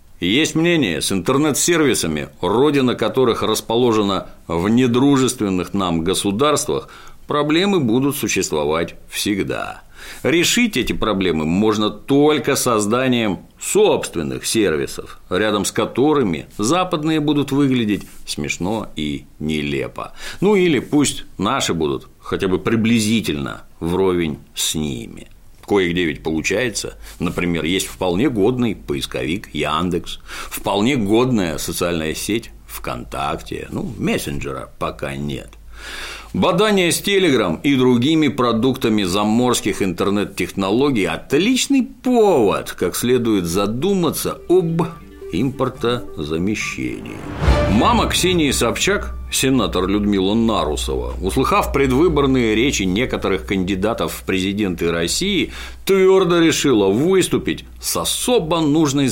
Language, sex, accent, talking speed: Russian, male, native, 95 wpm